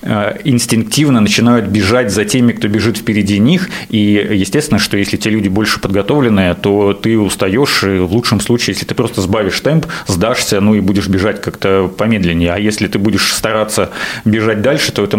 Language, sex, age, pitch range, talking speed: Russian, male, 30-49, 105-125 Hz, 180 wpm